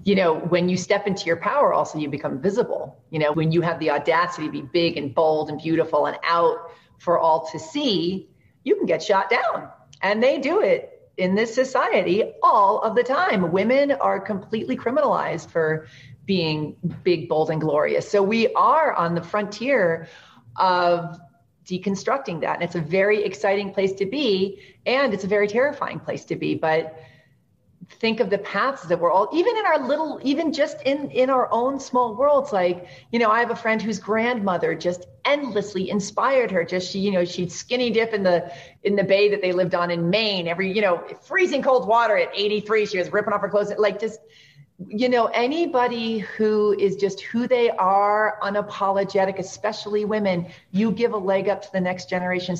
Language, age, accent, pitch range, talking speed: English, 40-59, American, 175-230 Hz, 195 wpm